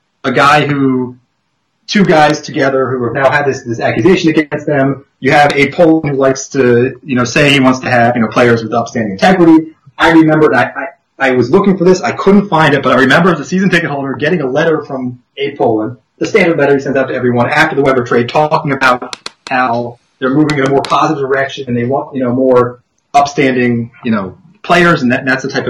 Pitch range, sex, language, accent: 125-160 Hz, male, English, American